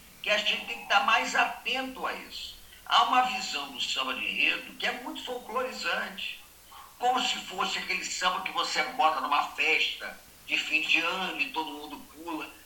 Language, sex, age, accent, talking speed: Portuguese, male, 50-69, Brazilian, 185 wpm